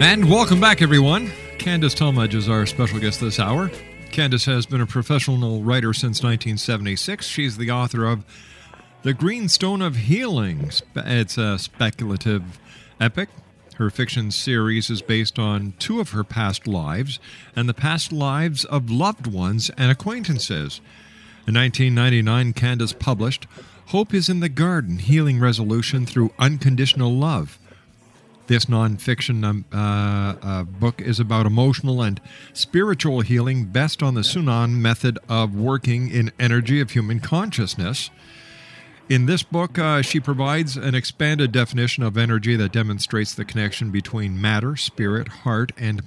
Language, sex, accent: English, male, American